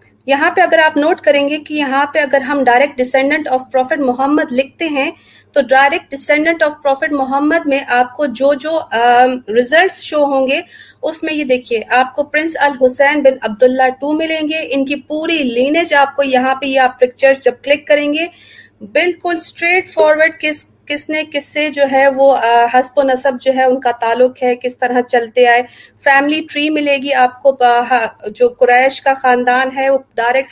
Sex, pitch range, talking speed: female, 250-295 Hz, 180 wpm